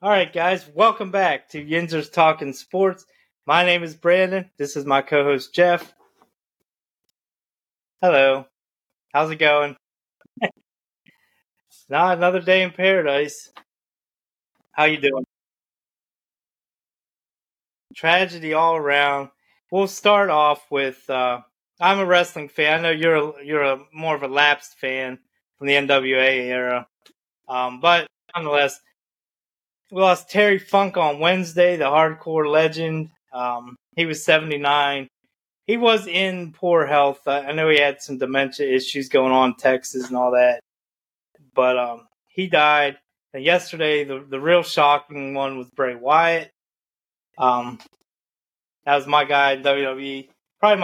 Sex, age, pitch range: male, 20-39, 135-175 Hz